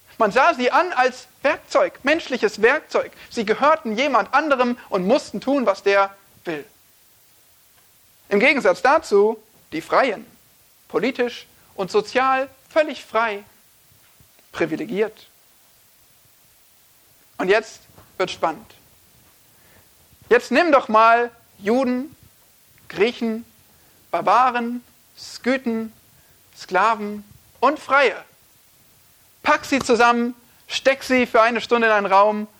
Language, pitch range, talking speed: German, 200-275 Hz, 100 wpm